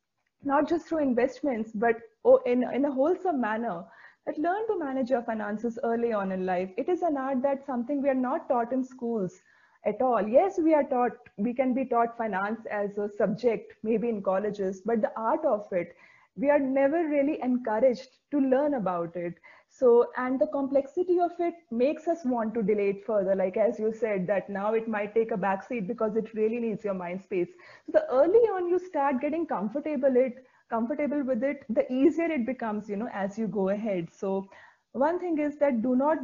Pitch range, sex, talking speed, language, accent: 210-275 Hz, female, 200 wpm, English, Indian